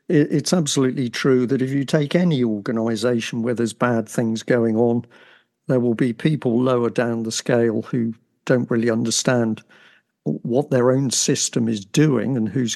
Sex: male